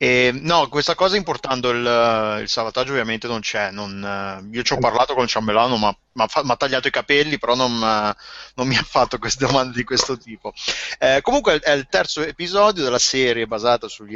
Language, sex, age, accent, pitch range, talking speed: Italian, male, 30-49, native, 110-140 Hz, 200 wpm